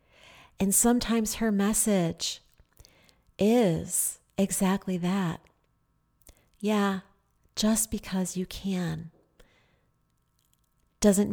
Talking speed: 70 wpm